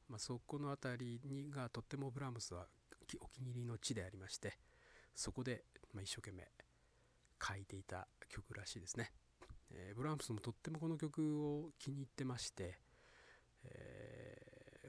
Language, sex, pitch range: Japanese, male, 105-145 Hz